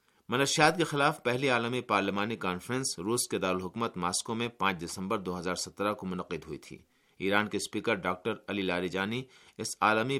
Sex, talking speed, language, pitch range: male, 110 wpm, Urdu, 95-120 Hz